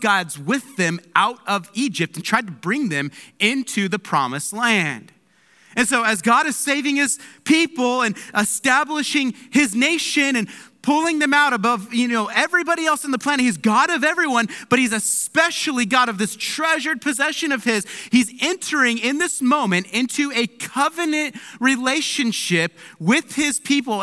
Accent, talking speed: American, 160 wpm